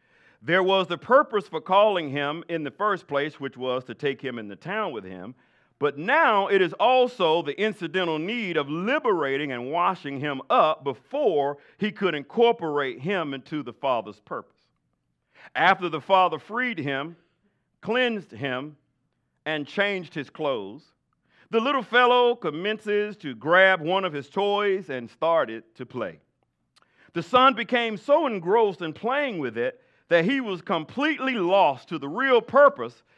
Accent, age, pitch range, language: American, 50-69, 135-205 Hz, English